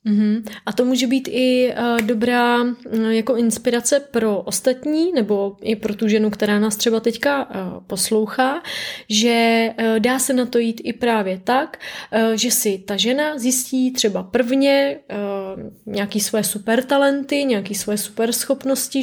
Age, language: 30-49, Czech